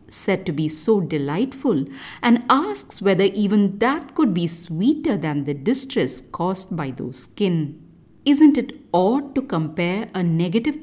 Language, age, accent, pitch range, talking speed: English, 50-69, Indian, 160-255 Hz, 150 wpm